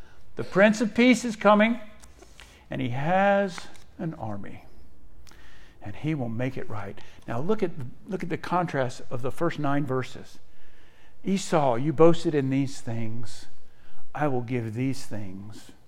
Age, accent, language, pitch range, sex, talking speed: 50-69, American, English, 110-180 Hz, male, 145 wpm